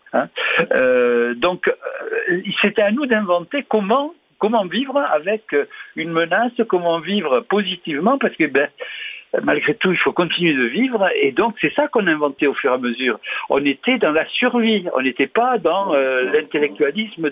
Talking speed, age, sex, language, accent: 175 wpm, 60-79, male, French, French